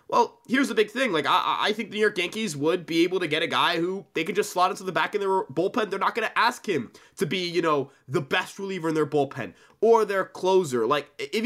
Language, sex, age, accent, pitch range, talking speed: English, male, 20-39, American, 150-205 Hz, 270 wpm